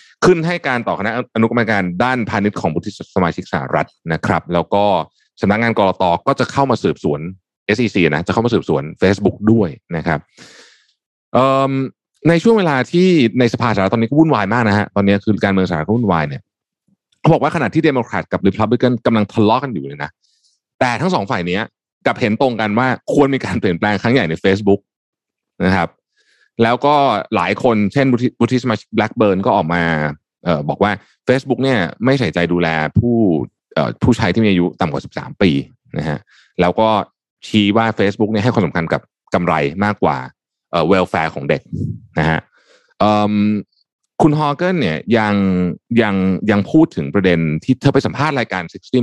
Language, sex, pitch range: Thai, male, 95-130 Hz